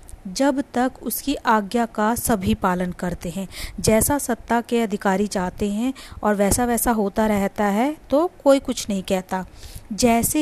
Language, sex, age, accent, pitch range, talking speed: Hindi, female, 30-49, native, 200-240 Hz, 155 wpm